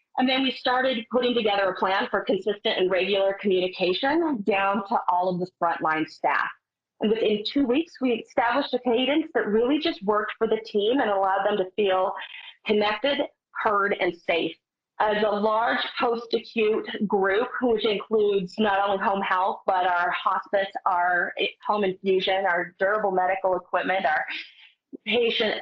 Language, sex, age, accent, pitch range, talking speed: English, female, 30-49, American, 185-230 Hz, 155 wpm